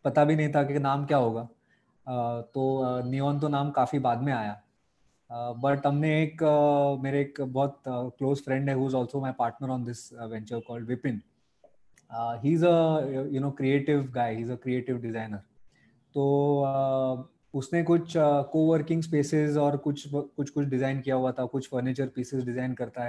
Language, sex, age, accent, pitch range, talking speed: Hindi, male, 20-39, native, 125-150 Hz, 145 wpm